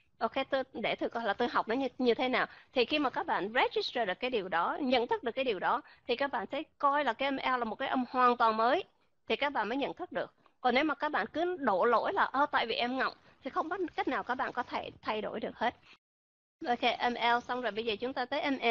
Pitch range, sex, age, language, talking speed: 220-270 Hz, female, 20-39, Vietnamese, 280 wpm